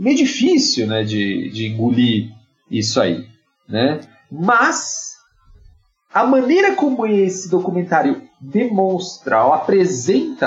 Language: Portuguese